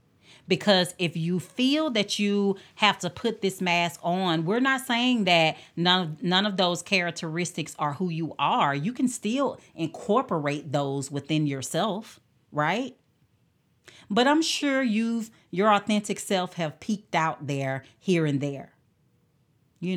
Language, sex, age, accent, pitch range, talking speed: English, female, 40-59, American, 145-190 Hz, 145 wpm